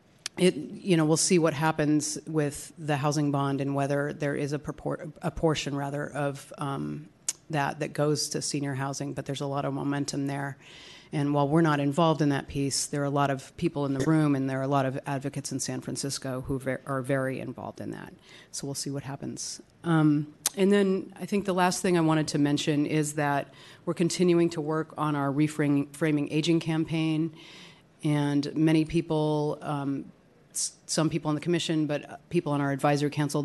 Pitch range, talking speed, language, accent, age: 140-160 Hz, 205 wpm, English, American, 30-49